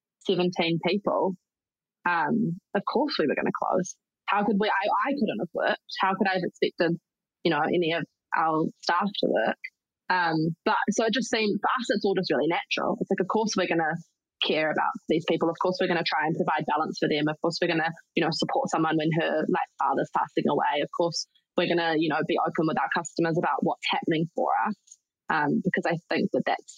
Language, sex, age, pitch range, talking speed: English, female, 20-39, 160-190 Hz, 225 wpm